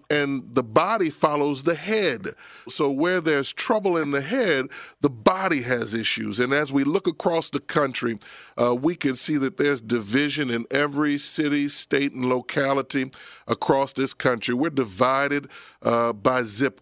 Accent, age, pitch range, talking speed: American, 40-59, 130-165 Hz, 160 wpm